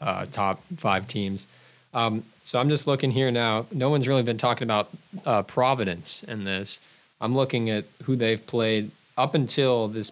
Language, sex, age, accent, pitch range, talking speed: English, male, 20-39, American, 105-120 Hz, 180 wpm